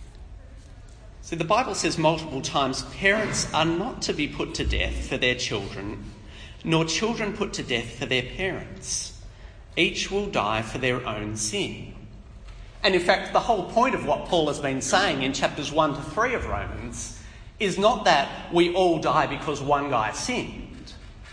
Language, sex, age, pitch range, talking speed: English, male, 40-59, 100-165 Hz, 170 wpm